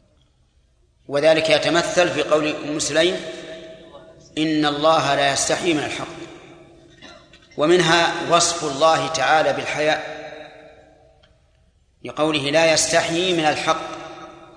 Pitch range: 150-165 Hz